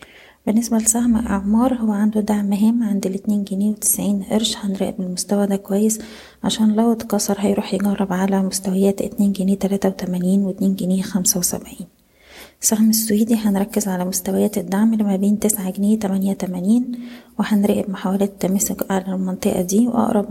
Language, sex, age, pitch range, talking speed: Arabic, female, 20-39, 195-215 Hz, 135 wpm